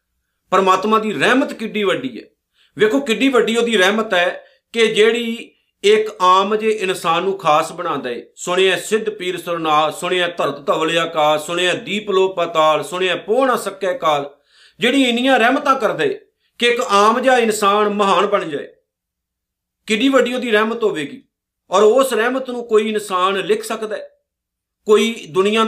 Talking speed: 155 wpm